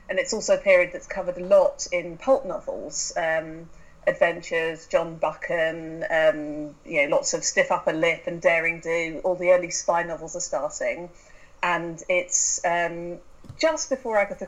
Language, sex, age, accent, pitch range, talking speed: English, female, 40-59, British, 165-225 Hz, 165 wpm